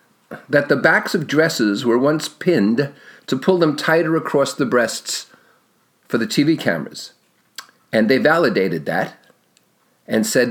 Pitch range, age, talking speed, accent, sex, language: 145-200 Hz, 50-69, 145 wpm, American, male, English